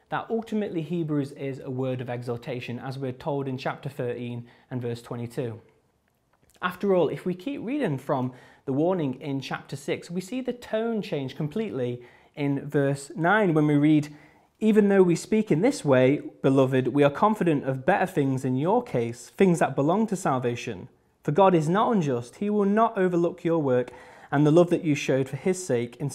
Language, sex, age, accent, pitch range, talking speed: English, male, 20-39, British, 130-175 Hz, 195 wpm